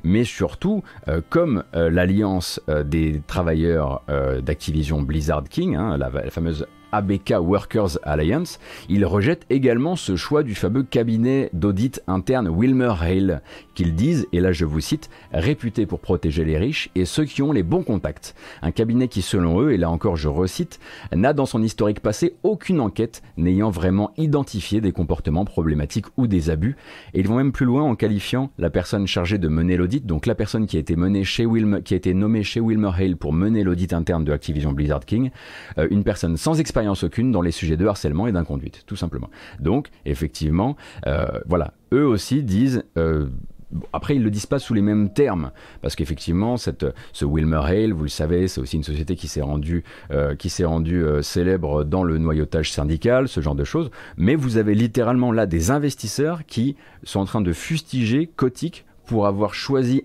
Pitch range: 80-115 Hz